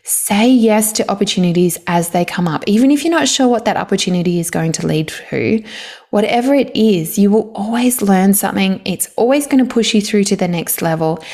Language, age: English, 20-39